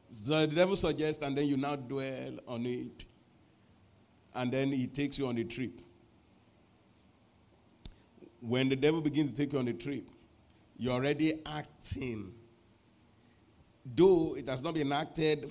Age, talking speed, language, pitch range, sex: 50-69, 145 wpm, English, 105-145 Hz, male